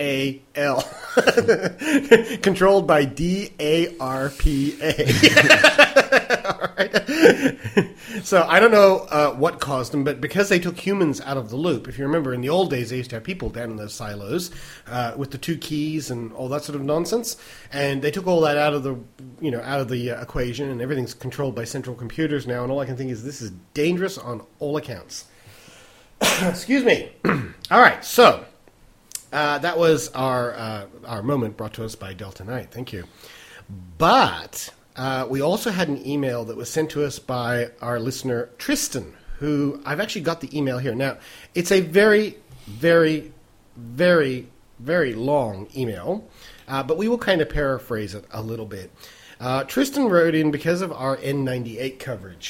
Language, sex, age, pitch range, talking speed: English, male, 30-49, 120-165 Hz, 180 wpm